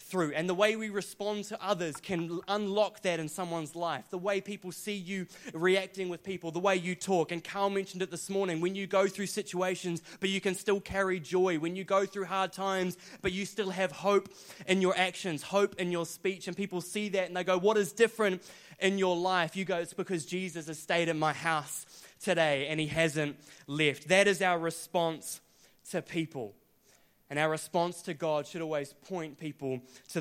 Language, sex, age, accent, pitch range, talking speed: English, male, 20-39, Australian, 145-185 Hz, 210 wpm